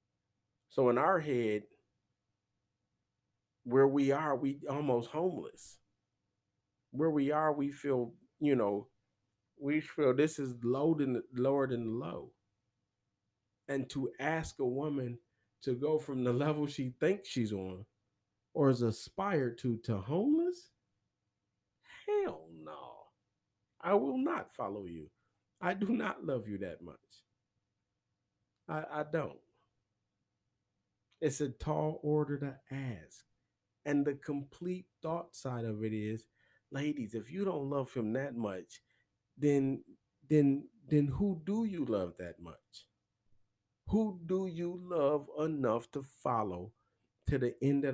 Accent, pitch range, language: American, 110-145 Hz, English